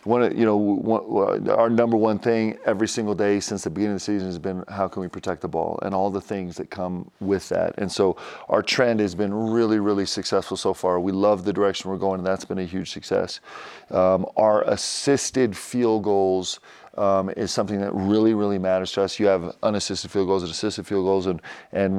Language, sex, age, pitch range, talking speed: English, male, 40-59, 95-105 Hz, 220 wpm